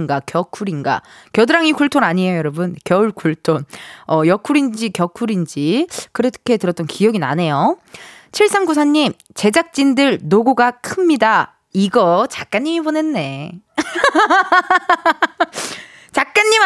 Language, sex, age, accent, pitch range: Korean, female, 20-39, native, 195-315 Hz